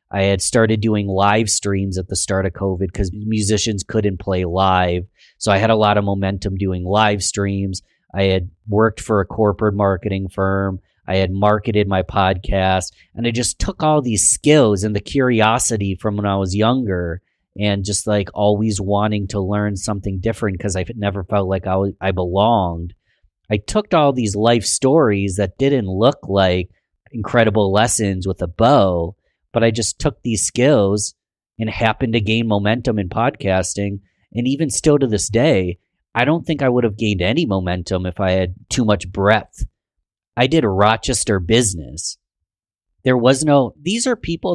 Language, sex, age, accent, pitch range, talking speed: English, male, 30-49, American, 95-115 Hz, 175 wpm